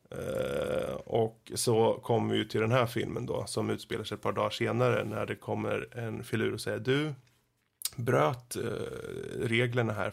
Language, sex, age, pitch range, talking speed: Swedish, male, 30-49, 105-130 Hz, 170 wpm